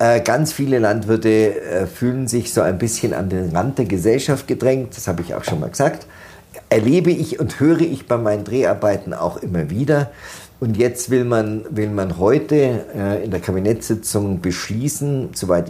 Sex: male